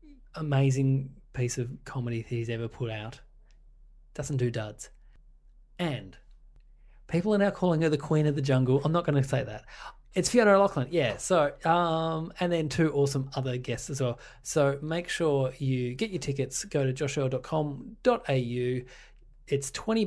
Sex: male